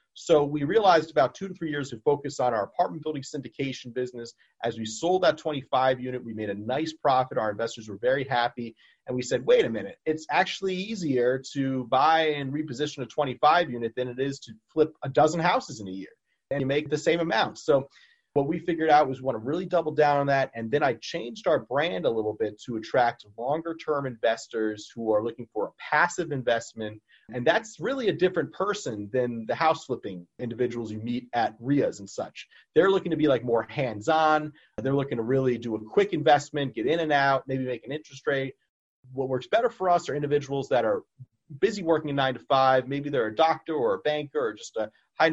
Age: 30-49